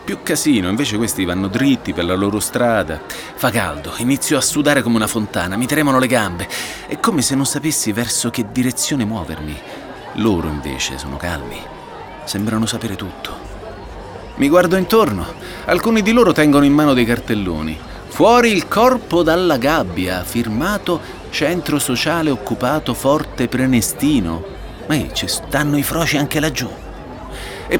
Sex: male